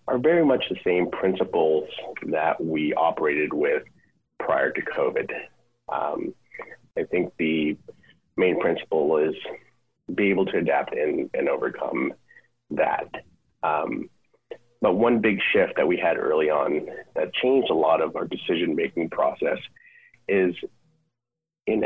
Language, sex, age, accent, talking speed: English, male, 30-49, American, 135 wpm